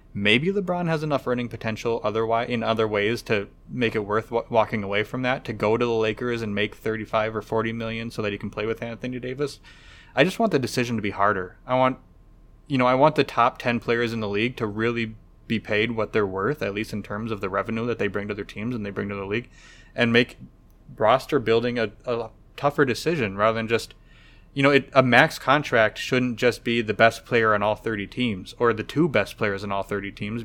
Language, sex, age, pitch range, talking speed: English, male, 20-39, 105-120 Hz, 235 wpm